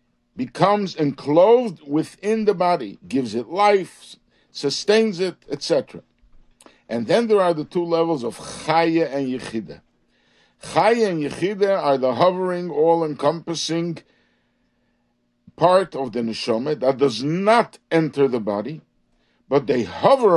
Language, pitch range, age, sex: English, 120-180 Hz, 60-79, male